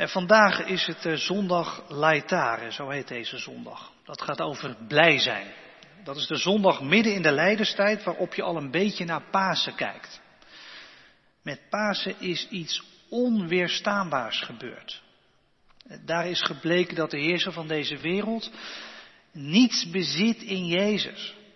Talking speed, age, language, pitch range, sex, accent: 140 wpm, 40-59, Dutch, 155-205 Hz, male, Dutch